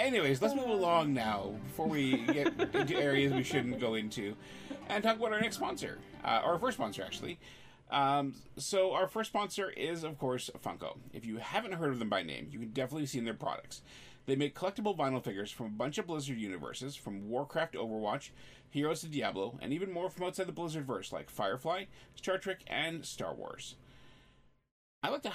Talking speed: 195 wpm